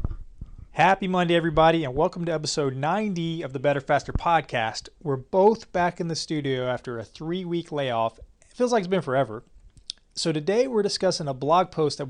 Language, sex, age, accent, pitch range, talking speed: English, male, 30-49, American, 135-165 Hz, 185 wpm